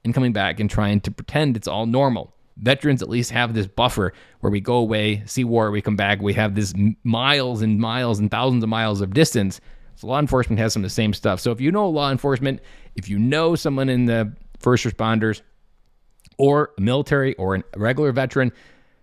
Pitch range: 105-135 Hz